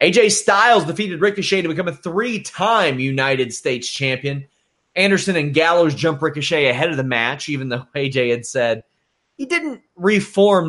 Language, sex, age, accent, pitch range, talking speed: English, male, 30-49, American, 130-175 Hz, 155 wpm